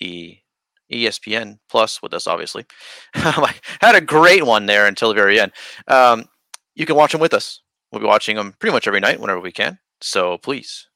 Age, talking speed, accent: 30-49, 185 wpm, American